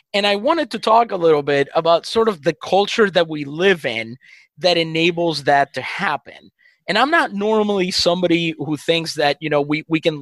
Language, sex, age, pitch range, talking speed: English, male, 20-39, 145-180 Hz, 205 wpm